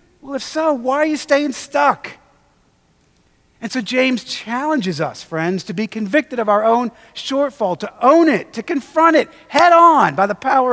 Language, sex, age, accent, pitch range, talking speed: English, male, 40-59, American, 175-260 Hz, 180 wpm